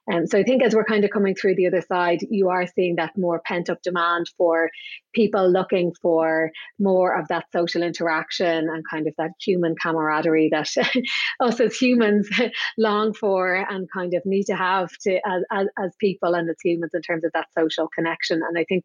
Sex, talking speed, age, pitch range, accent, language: female, 210 wpm, 30-49, 165-195 Hz, Irish, English